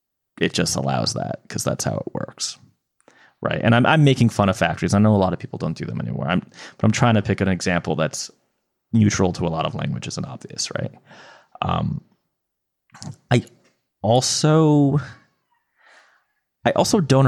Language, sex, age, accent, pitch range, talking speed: English, male, 30-49, American, 95-120 Hz, 175 wpm